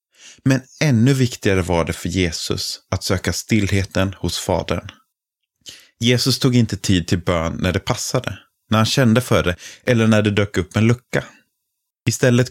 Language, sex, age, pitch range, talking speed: Swedish, male, 30-49, 95-115 Hz, 165 wpm